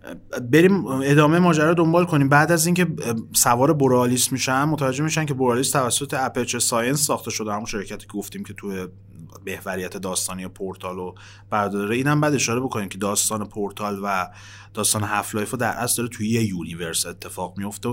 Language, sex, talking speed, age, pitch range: Persian, male, 165 wpm, 30-49, 100-130 Hz